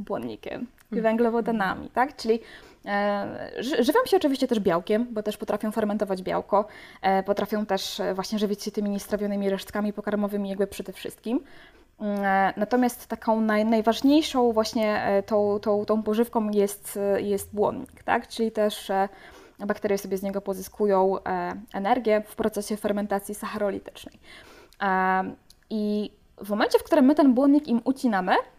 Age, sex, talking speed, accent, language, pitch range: 20-39, female, 125 wpm, native, Polish, 205-250 Hz